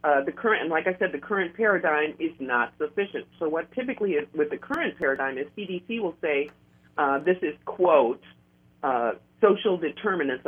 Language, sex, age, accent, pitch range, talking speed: English, female, 50-69, American, 140-195 Hz, 185 wpm